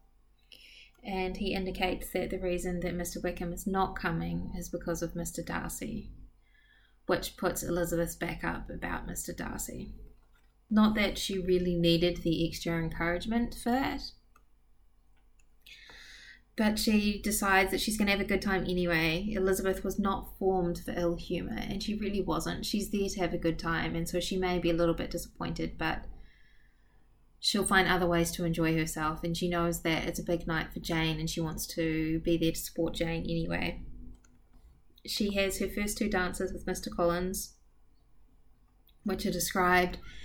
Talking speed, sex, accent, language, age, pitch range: 165 wpm, female, Australian, English, 20-39, 170-195 Hz